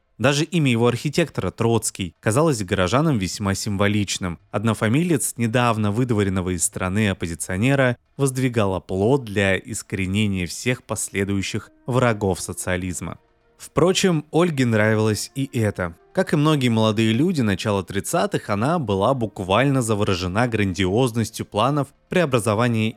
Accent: native